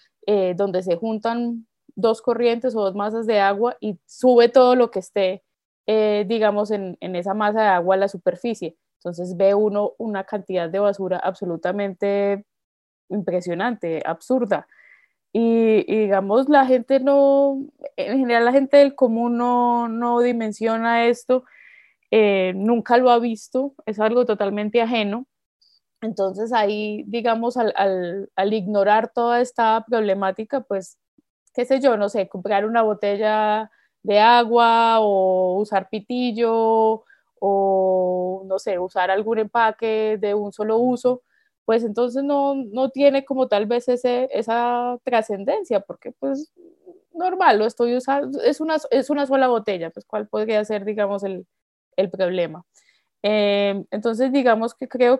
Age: 20-39